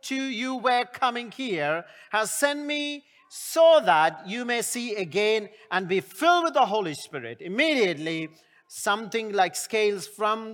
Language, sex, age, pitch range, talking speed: English, male, 40-59, 185-280 Hz, 150 wpm